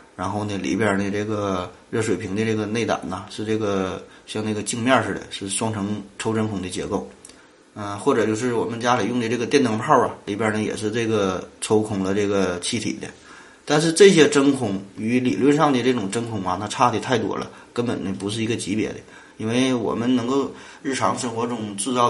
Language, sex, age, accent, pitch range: Chinese, male, 20-39, native, 100-125 Hz